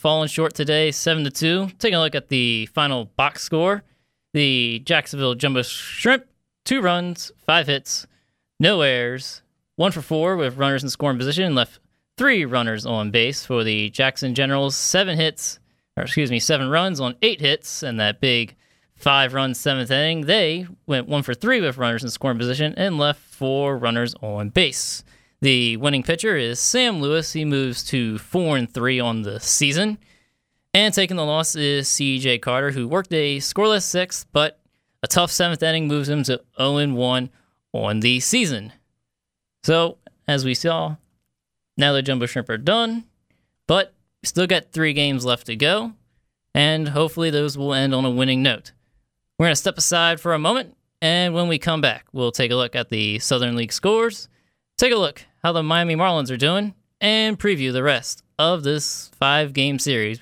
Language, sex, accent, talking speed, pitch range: English, male, American, 180 wpm, 125-170 Hz